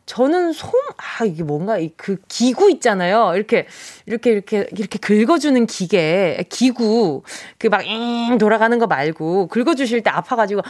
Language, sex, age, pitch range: Korean, female, 20-39, 220-315 Hz